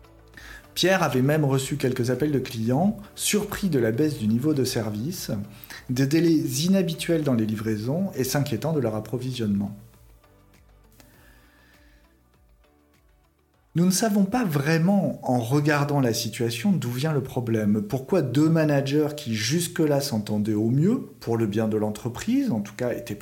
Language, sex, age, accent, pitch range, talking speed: French, male, 40-59, French, 115-175 Hz, 145 wpm